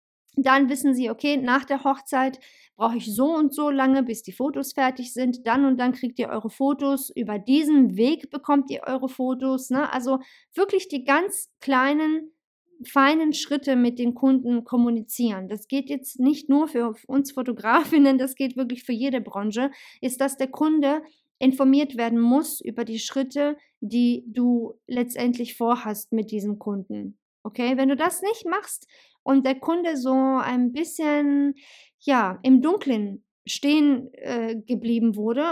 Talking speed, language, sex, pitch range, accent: 155 wpm, German, female, 235-280 Hz, German